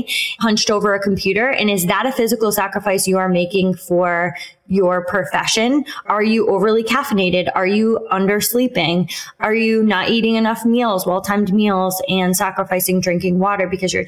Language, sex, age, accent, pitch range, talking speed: English, female, 20-39, American, 185-230 Hz, 165 wpm